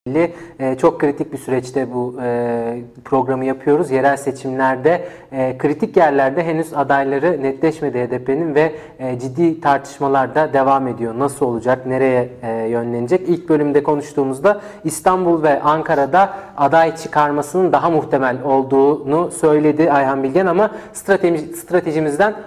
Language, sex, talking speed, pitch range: English, male, 105 wpm, 135-165 Hz